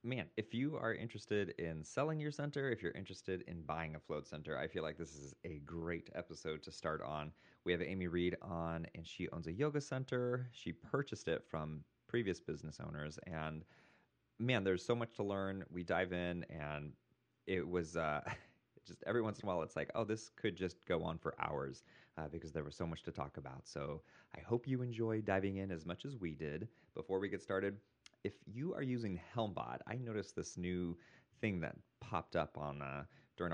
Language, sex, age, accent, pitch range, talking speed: English, male, 30-49, American, 80-115 Hz, 210 wpm